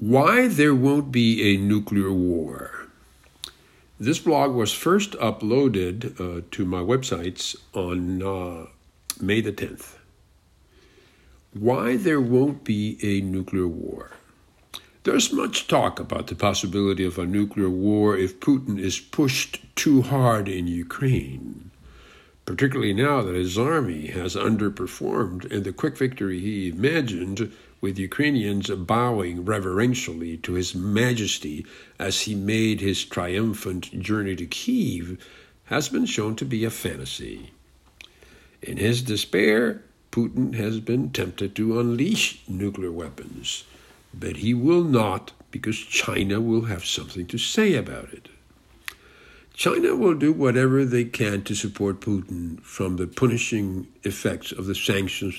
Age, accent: 60-79, American